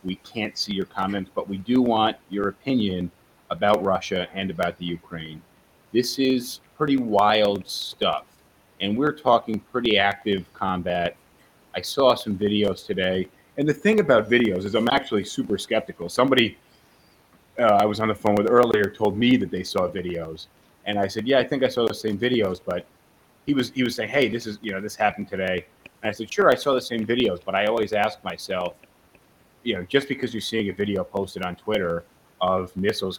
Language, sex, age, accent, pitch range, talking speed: English, male, 30-49, American, 95-115 Hz, 200 wpm